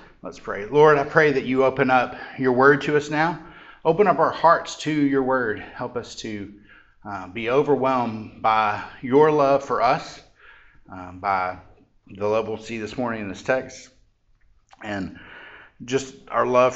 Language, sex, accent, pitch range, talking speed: English, male, American, 105-145 Hz, 170 wpm